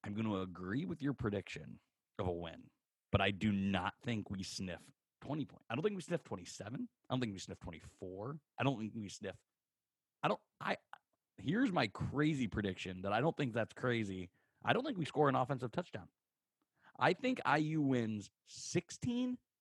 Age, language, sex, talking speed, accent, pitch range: 30-49, English, male, 190 wpm, American, 105-145 Hz